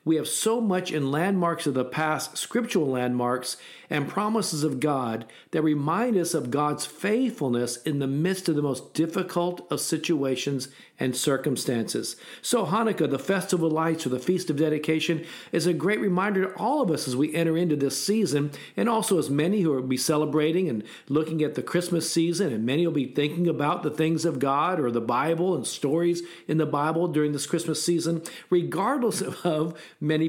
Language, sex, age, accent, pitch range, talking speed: English, male, 50-69, American, 140-175 Hz, 190 wpm